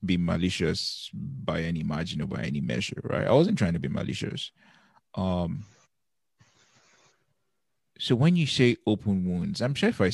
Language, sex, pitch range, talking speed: English, male, 95-120 Hz, 160 wpm